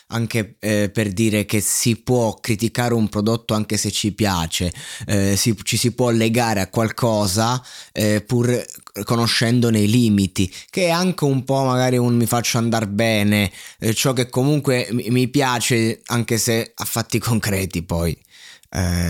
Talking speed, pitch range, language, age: 155 wpm, 100-120 Hz, Italian, 20-39